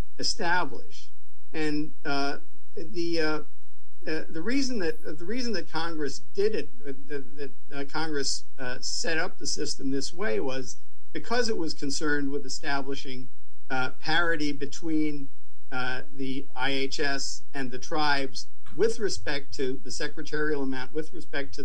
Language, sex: English, male